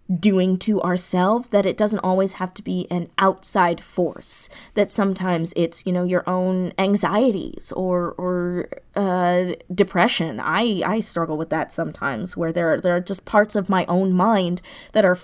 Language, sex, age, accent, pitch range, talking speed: English, female, 20-39, American, 170-200 Hz, 175 wpm